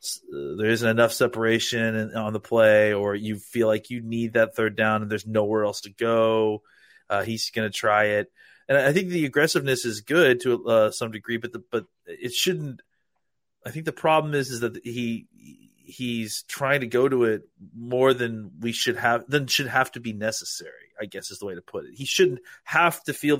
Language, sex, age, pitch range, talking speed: English, male, 30-49, 110-130 Hz, 210 wpm